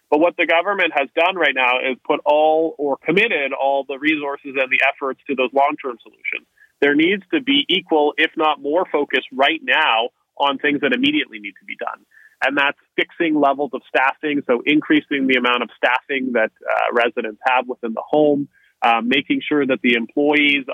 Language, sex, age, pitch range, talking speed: English, male, 30-49, 130-155 Hz, 195 wpm